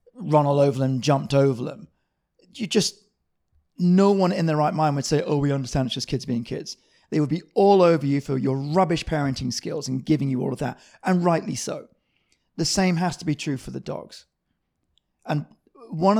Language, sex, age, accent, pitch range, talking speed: English, male, 30-49, British, 125-160 Hz, 210 wpm